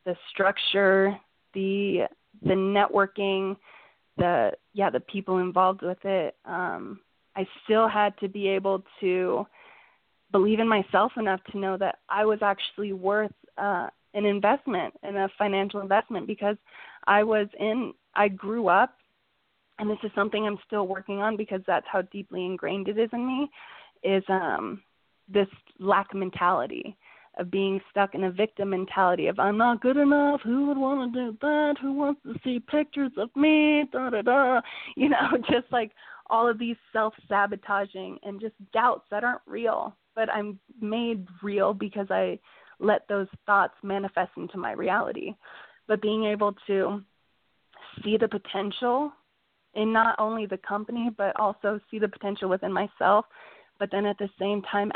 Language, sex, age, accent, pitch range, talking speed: English, female, 20-39, American, 195-225 Hz, 160 wpm